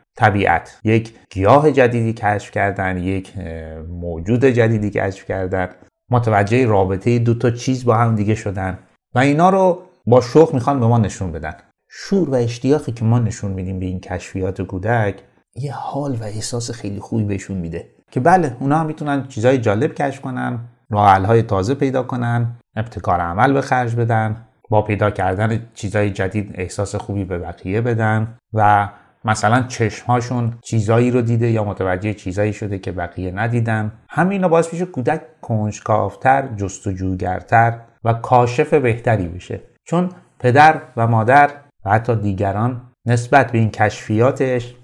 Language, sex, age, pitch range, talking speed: Persian, male, 30-49, 100-125 Hz, 150 wpm